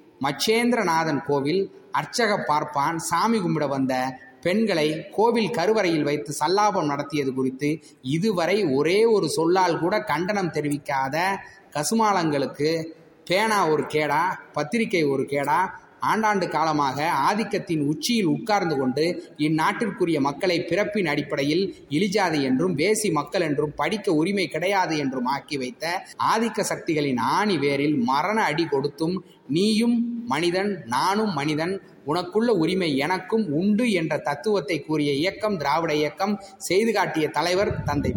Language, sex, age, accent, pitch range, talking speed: Tamil, male, 30-49, native, 145-195 Hz, 115 wpm